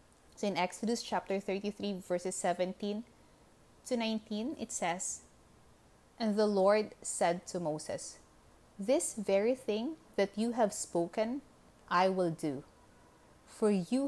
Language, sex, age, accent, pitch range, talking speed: English, female, 20-39, Filipino, 175-220 Hz, 125 wpm